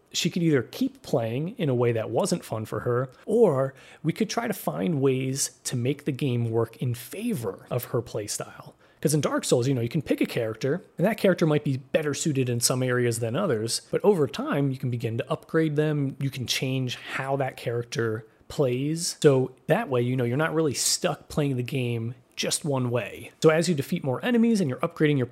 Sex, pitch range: male, 125-165 Hz